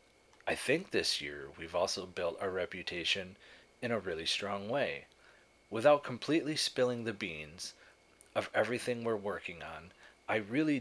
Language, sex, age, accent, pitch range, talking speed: English, male, 30-49, American, 95-110 Hz, 145 wpm